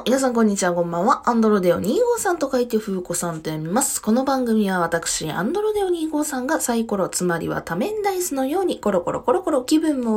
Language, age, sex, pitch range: Japanese, 20-39, female, 195-295 Hz